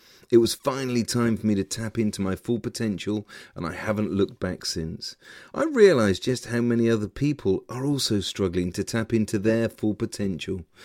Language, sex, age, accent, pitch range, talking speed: English, male, 40-59, British, 95-120 Hz, 190 wpm